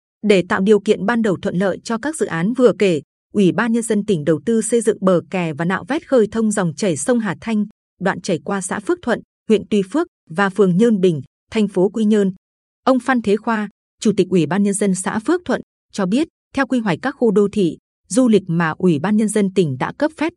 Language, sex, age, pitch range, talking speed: Vietnamese, female, 20-39, 185-225 Hz, 250 wpm